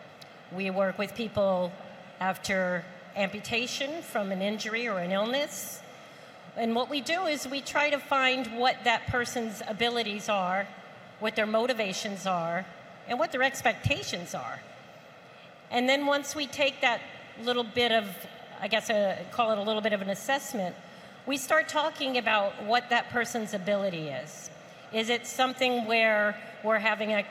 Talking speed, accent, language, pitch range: 155 wpm, American, English, 195-245 Hz